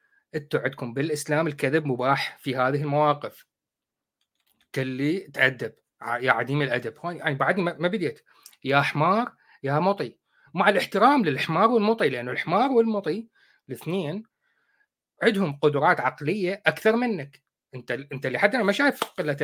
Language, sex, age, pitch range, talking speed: Arabic, male, 30-49, 140-225 Hz, 125 wpm